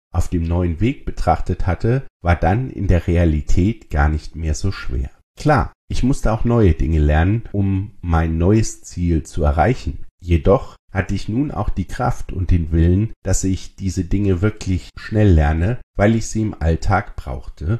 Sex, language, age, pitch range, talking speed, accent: male, German, 50-69, 80-105 Hz, 175 wpm, German